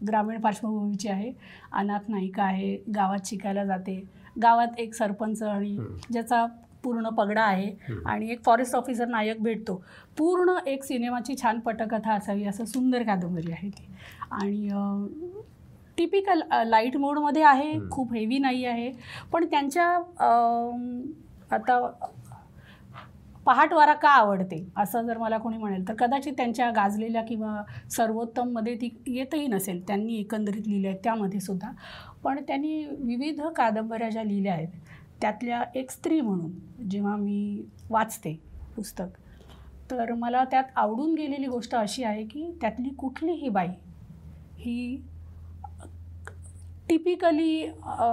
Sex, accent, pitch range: female, native, 205-255 Hz